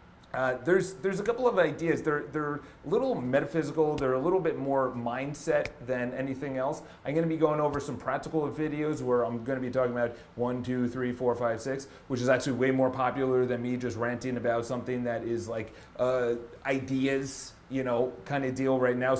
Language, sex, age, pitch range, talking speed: English, male, 30-49, 125-150 Hz, 205 wpm